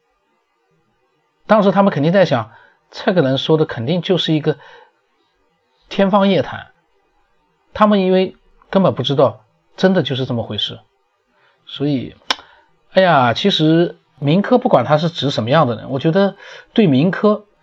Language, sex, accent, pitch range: Chinese, male, native, 125-180 Hz